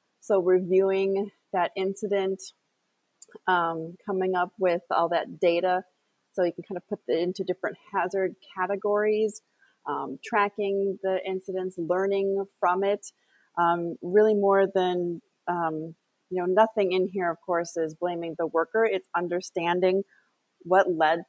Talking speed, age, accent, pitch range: 140 wpm, 30-49, American, 170-195 Hz